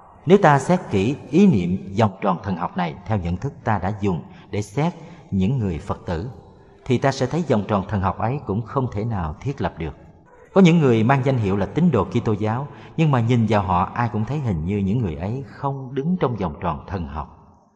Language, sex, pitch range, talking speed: Vietnamese, male, 95-135 Hz, 235 wpm